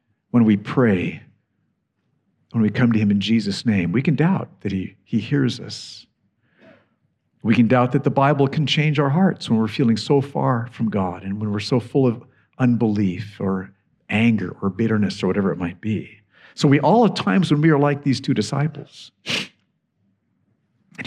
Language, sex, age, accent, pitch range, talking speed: English, male, 50-69, American, 105-145 Hz, 185 wpm